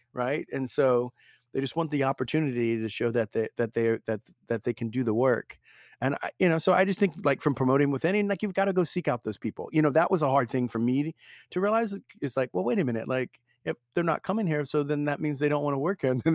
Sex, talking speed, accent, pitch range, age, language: male, 285 wpm, American, 115-150 Hz, 40-59, English